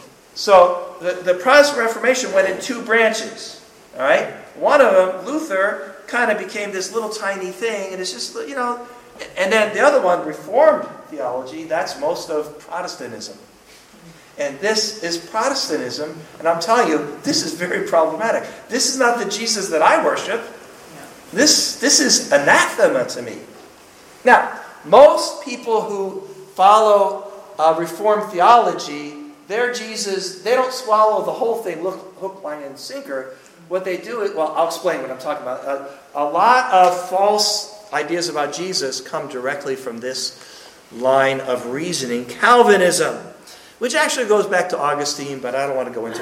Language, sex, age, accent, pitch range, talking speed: English, male, 50-69, American, 160-225 Hz, 160 wpm